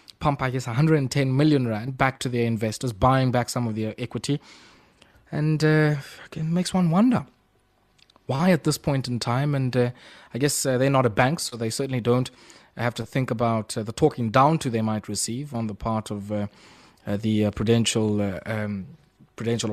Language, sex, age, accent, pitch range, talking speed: English, male, 20-39, South African, 115-145 Hz, 190 wpm